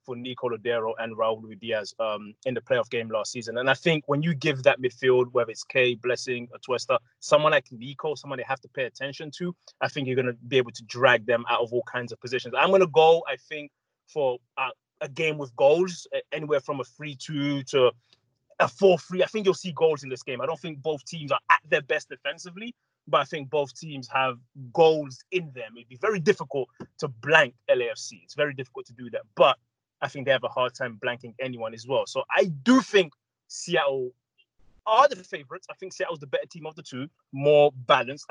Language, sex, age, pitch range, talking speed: English, male, 20-39, 125-170 Hz, 225 wpm